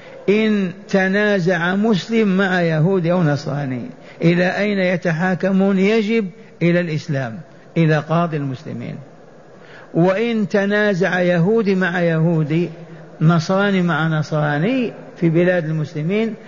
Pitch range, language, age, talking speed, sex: 155-190 Hz, Arabic, 50-69, 100 wpm, male